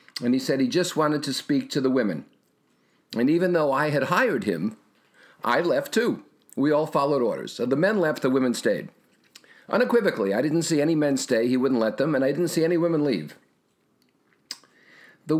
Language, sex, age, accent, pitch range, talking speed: English, male, 50-69, American, 135-180 Hz, 200 wpm